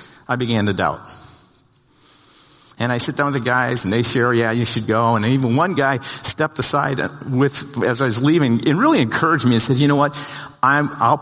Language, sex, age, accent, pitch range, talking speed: English, male, 50-69, American, 115-145 Hz, 215 wpm